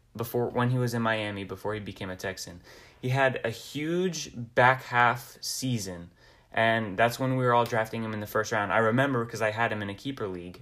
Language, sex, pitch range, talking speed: English, male, 110-130 Hz, 225 wpm